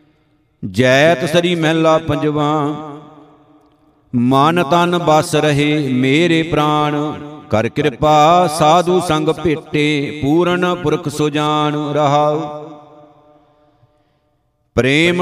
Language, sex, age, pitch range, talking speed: Punjabi, male, 50-69, 150-160 Hz, 80 wpm